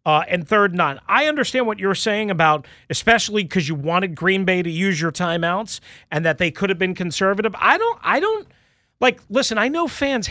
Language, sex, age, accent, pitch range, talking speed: English, male, 40-59, American, 170-240 Hz, 210 wpm